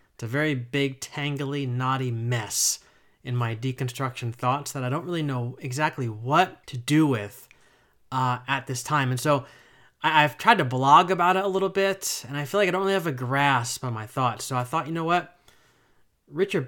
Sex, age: male, 30-49